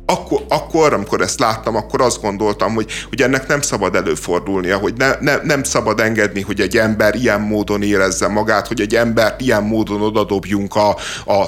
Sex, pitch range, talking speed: male, 110-135 Hz, 180 wpm